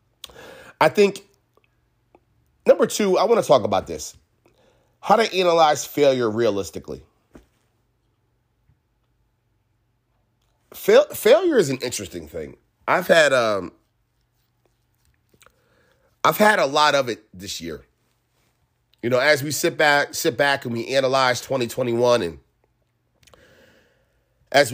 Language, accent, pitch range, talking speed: English, American, 115-150 Hz, 110 wpm